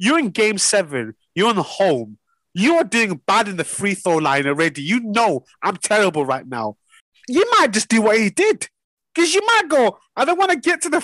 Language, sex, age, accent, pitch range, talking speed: English, male, 30-49, British, 180-260 Hz, 230 wpm